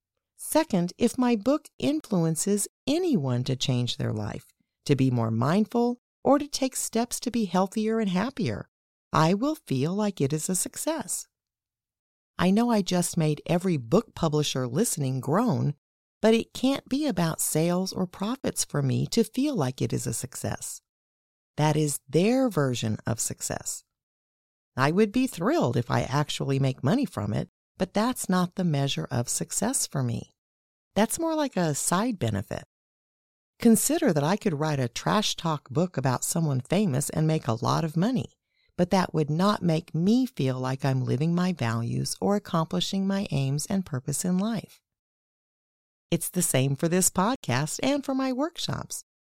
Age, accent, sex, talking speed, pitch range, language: 50-69, American, female, 170 wpm, 140-220 Hz, English